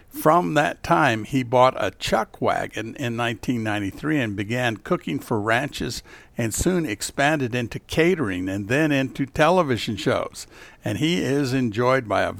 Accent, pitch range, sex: American, 110-145 Hz, male